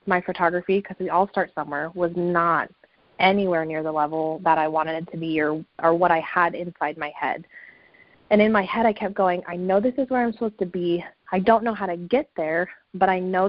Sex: female